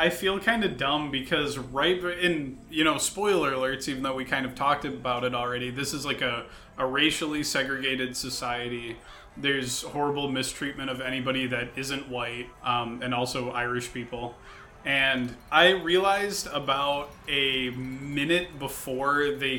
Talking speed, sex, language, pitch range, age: 155 wpm, male, English, 125-160 Hz, 20-39